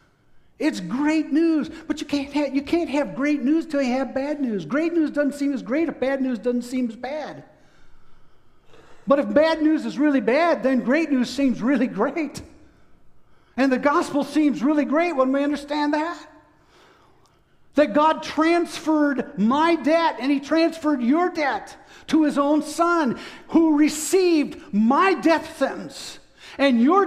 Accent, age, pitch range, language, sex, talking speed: American, 50-69, 275-330 Hz, English, male, 160 wpm